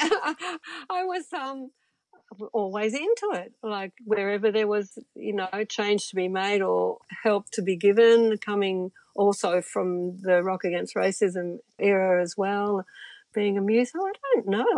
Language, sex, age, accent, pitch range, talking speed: English, female, 50-69, Australian, 180-215 Hz, 150 wpm